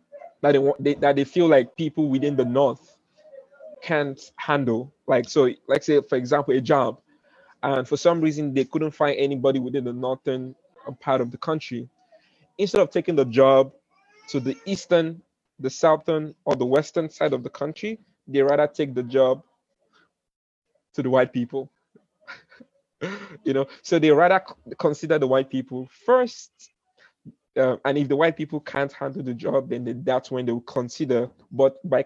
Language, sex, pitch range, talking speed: English, male, 130-160 Hz, 170 wpm